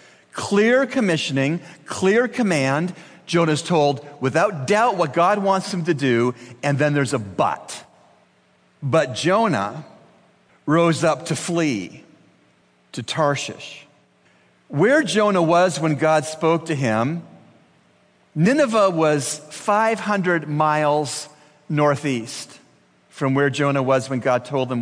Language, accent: English, American